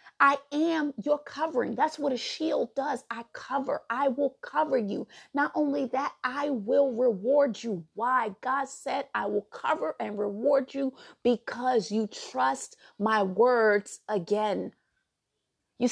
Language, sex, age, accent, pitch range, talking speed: English, female, 30-49, American, 235-305 Hz, 145 wpm